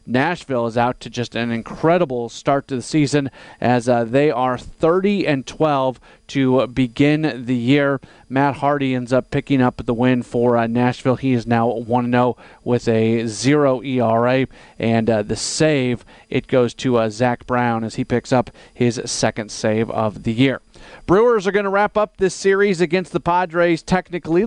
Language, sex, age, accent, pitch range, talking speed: English, male, 40-59, American, 125-155 Hz, 175 wpm